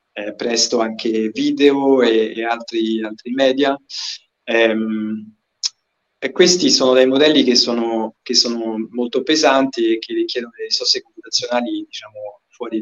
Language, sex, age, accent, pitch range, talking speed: Italian, male, 30-49, native, 120-145 Hz, 135 wpm